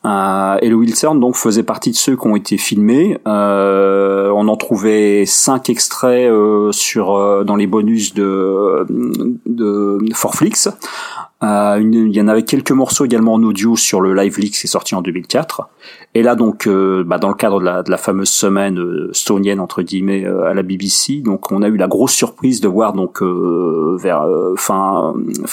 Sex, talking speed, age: male, 190 wpm, 40-59